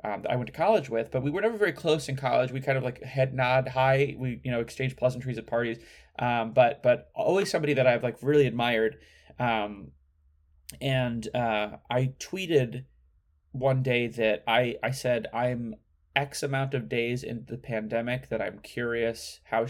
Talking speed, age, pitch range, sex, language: 190 wpm, 20-39, 110-130 Hz, male, English